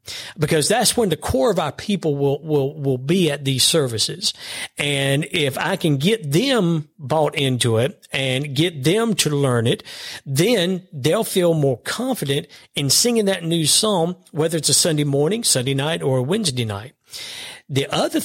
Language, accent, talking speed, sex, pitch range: English, American, 175 wpm, male, 135-180 Hz